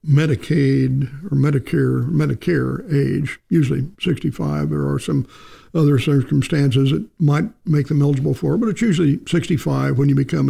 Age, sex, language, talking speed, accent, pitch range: 60-79, male, English, 150 wpm, American, 135-165 Hz